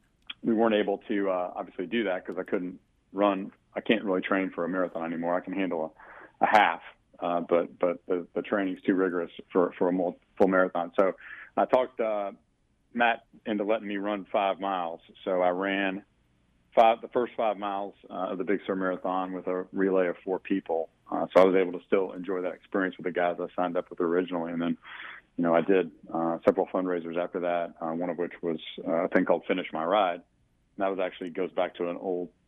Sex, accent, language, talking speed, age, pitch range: male, American, English, 220 wpm, 40-59, 85-95 Hz